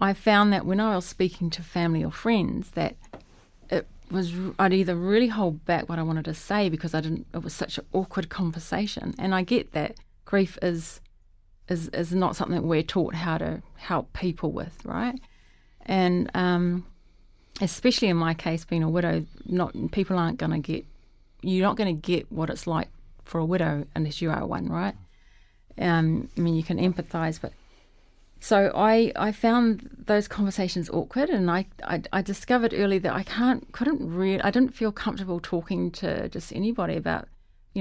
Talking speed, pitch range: 185 wpm, 160-200 Hz